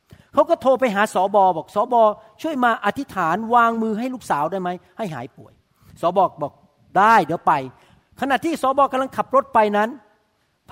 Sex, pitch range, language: male, 160-225 Hz, Thai